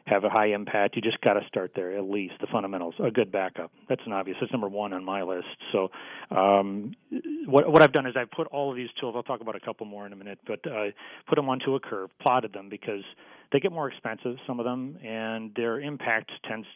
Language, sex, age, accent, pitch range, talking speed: English, male, 40-59, American, 105-130 Hz, 245 wpm